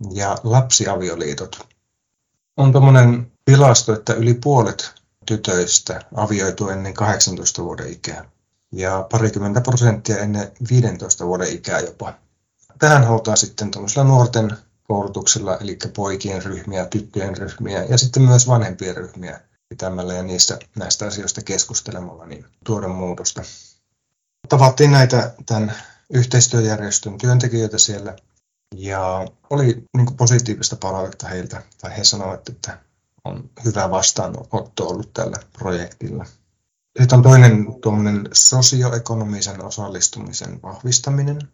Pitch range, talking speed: 100-120 Hz, 105 wpm